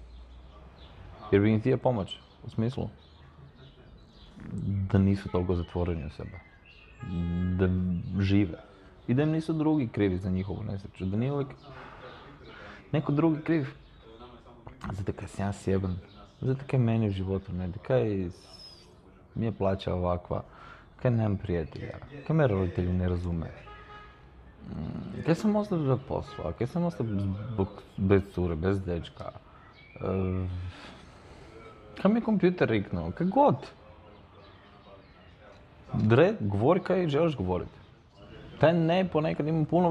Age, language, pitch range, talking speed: 30-49, Croatian, 90-120 Hz, 125 wpm